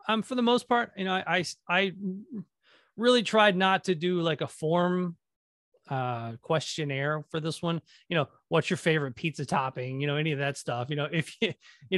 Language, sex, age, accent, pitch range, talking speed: English, male, 30-49, American, 140-180 Hz, 205 wpm